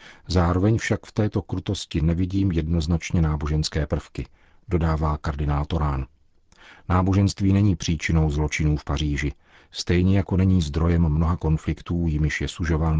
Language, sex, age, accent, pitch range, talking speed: Czech, male, 40-59, native, 75-90 Hz, 125 wpm